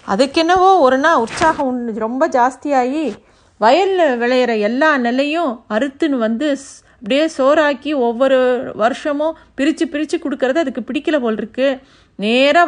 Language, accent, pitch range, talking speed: Tamil, native, 235-305 Hz, 115 wpm